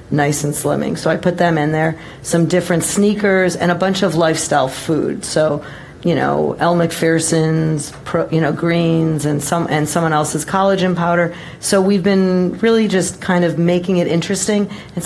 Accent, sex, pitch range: American, female, 160-195 Hz